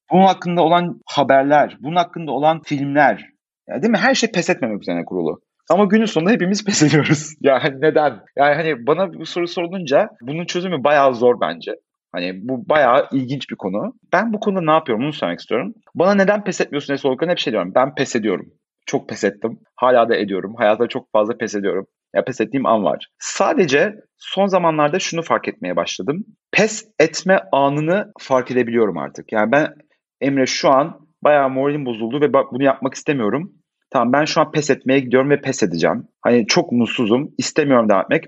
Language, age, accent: Turkish, 40-59, native